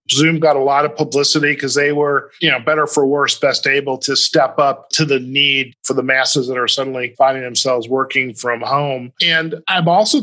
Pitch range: 130-155 Hz